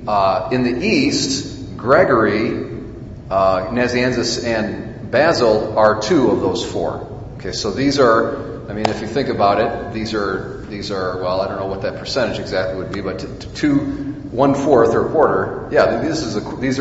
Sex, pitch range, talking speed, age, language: male, 110-125 Hz, 180 wpm, 40-59, English